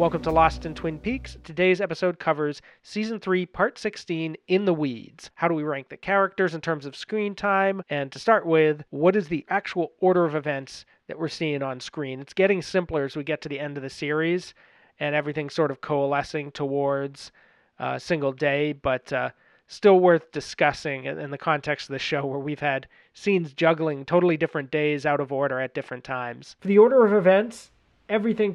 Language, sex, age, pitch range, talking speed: English, male, 30-49, 135-175 Hz, 200 wpm